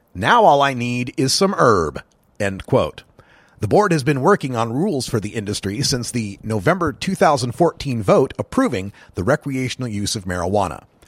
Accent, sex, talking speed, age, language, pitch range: American, male, 160 wpm, 40-59, English, 105-150 Hz